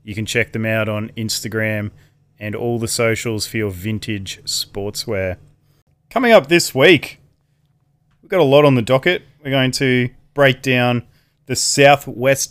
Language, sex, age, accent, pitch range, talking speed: English, male, 20-39, Australian, 120-145 Hz, 160 wpm